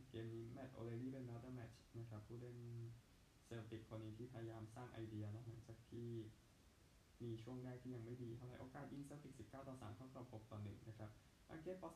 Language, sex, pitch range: Thai, male, 110-125 Hz